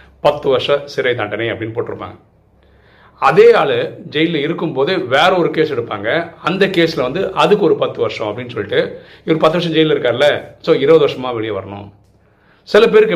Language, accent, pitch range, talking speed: Tamil, native, 110-170 Hz, 125 wpm